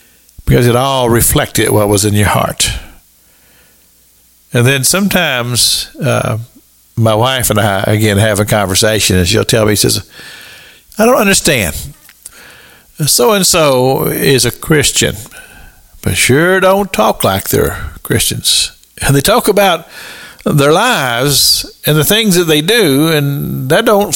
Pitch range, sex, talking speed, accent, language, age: 105-150 Hz, male, 135 wpm, American, English, 50-69